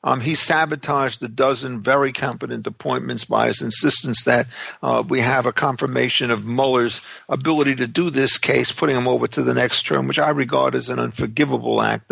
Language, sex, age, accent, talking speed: English, male, 50-69, American, 190 wpm